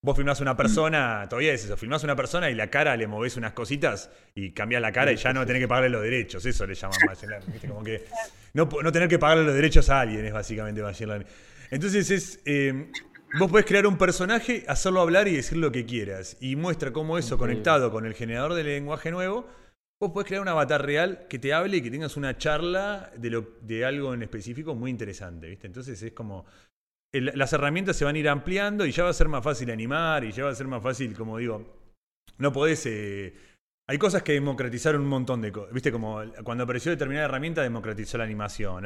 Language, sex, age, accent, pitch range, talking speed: Spanish, male, 30-49, Argentinian, 110-155 Hz, 220 wpm